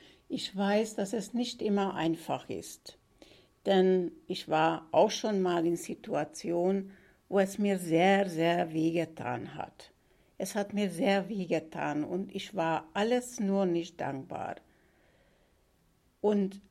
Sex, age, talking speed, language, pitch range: female, 60-79, 135 wpm, German, 175-220 Hz